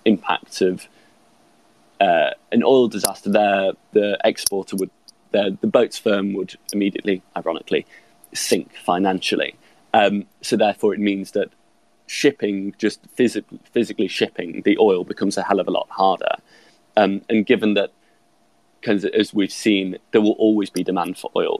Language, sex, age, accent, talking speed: English, male, 20-39, British, 145 wpm